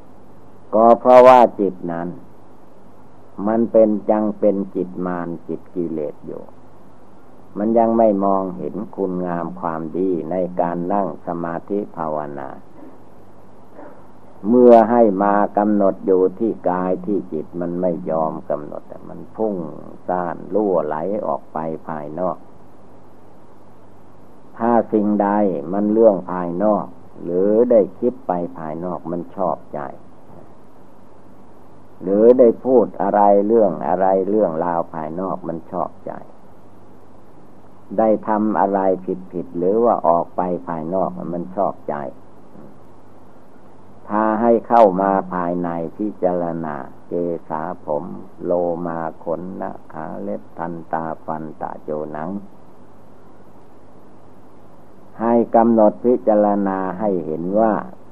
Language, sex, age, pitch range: Thai, male, 60-79, 85-105 Hz